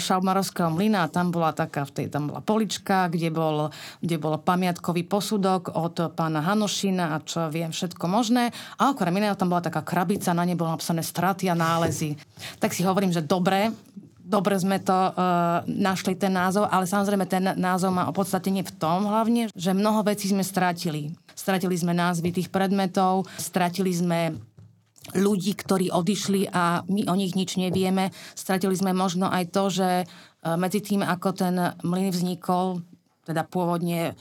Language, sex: Slovak, female